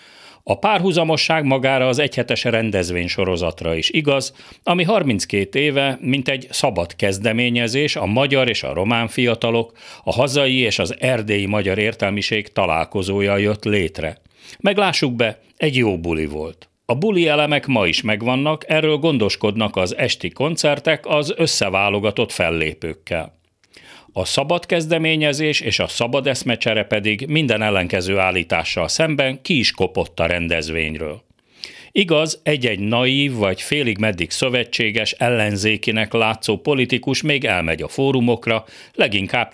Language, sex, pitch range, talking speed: Hungarian, male, 100-140 Hz, 125 wpm